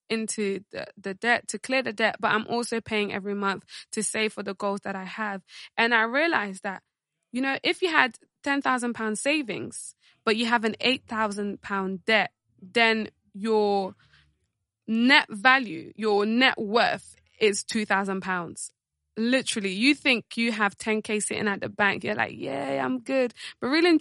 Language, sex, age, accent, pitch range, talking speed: English, female, 20-39, British, 200-250 Hz, 165 wpm